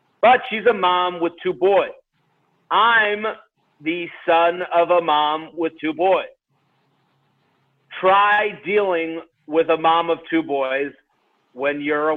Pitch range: 165-200 Hz